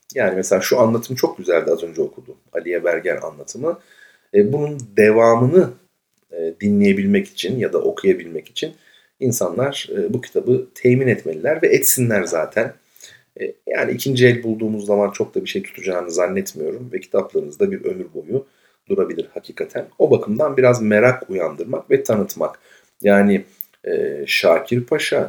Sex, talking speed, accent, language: male, 135 wpm, native, Turkish